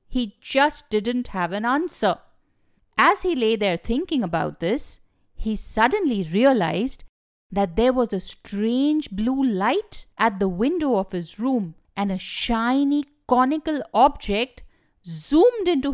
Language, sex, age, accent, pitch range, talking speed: English, female, 50-69, Indian, 200-295 Hz, 135 wpm